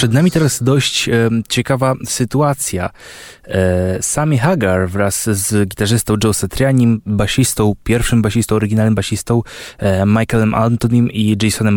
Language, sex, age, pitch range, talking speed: Polish, male, 20-39, 100-115 Hz, 125 wpm